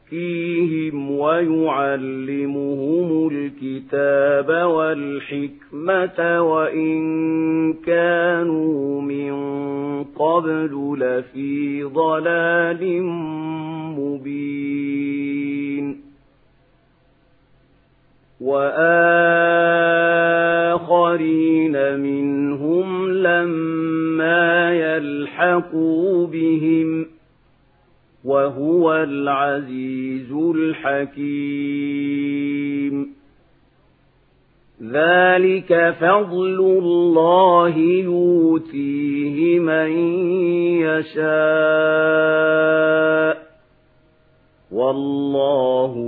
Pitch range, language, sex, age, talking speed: 140-170 Hz, Arabic, male, 40-59, 35 wpm